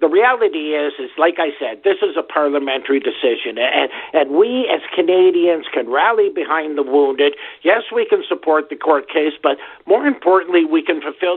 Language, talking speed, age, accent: English, 185 wpm, 50-69, American